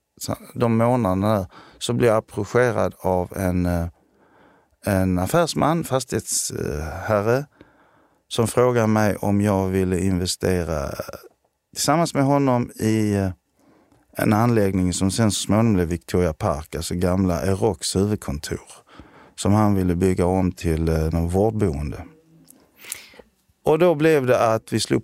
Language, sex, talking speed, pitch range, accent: Swedish, male, 120 wpm, 90-120 Hz, native